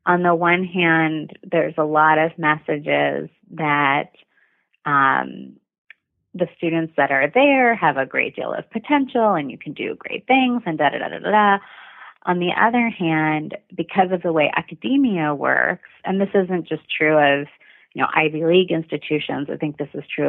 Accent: American